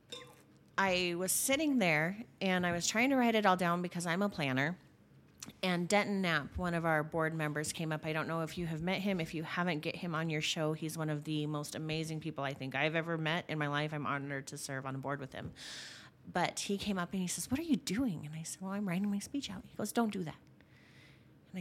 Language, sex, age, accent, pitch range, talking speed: English, female, 30-49, American, 160-205 Hz, 260 wpm